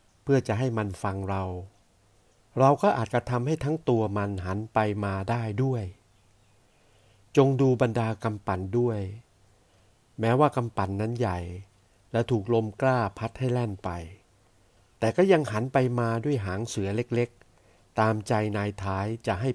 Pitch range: 95-120 Hz